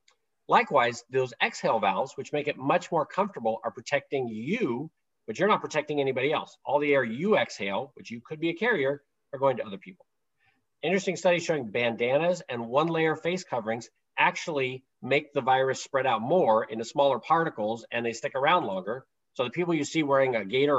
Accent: American